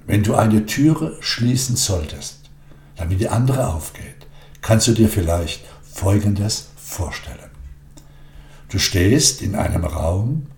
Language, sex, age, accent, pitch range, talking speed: German, male, 60-79, German, 85-130 Hz, 120 wpm